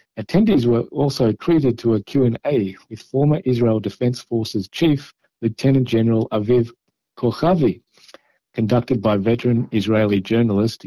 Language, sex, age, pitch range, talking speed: Hebrew, male, 50-69, 110-135 Hz, 120 wpm